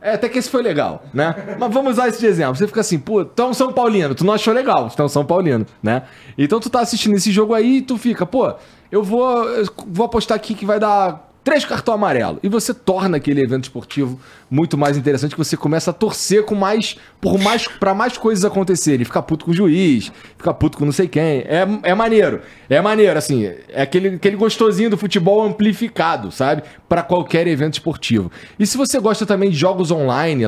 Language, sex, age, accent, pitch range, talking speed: Portuguese, male, 20-39, Brazilian, 135-200 Hz, 220 wpm